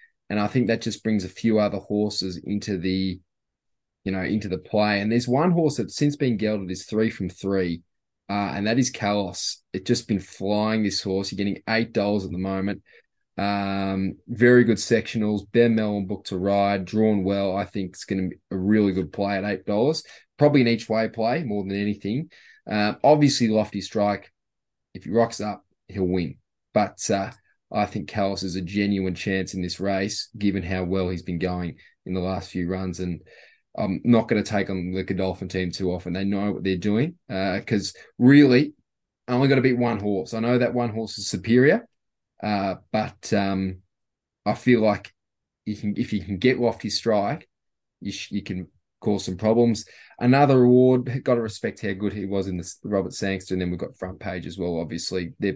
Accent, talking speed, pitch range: Australian, 205 wpm, 95-110 Hz